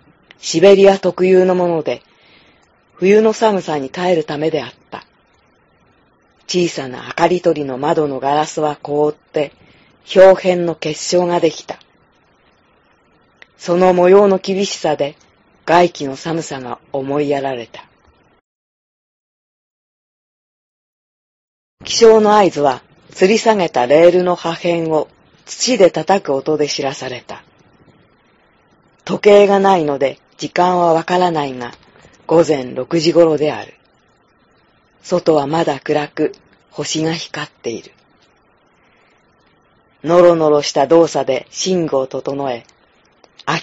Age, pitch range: 40-59, 145-180 Hz